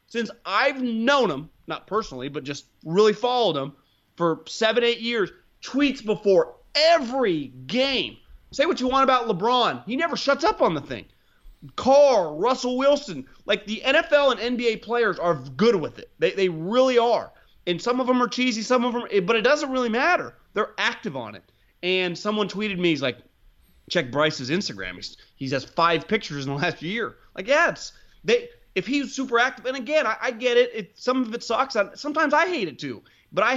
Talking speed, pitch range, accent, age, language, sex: 200 wpm, 190-265 Hz, American, 30-49, English, male